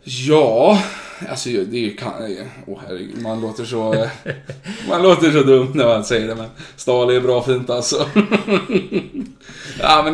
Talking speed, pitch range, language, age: 130 wpm, 120-140 Hz, Swedish, 20-39